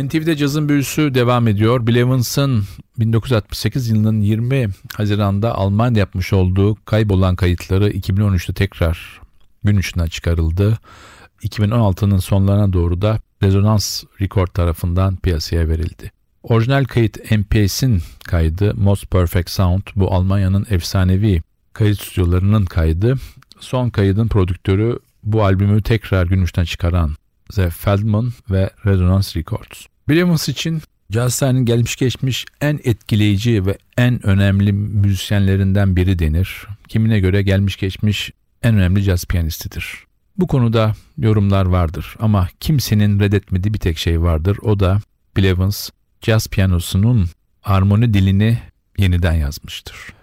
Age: 50-69